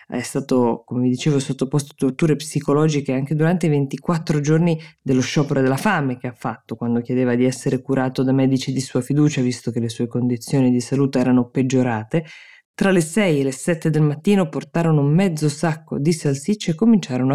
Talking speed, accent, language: 190 wpm, native, Italian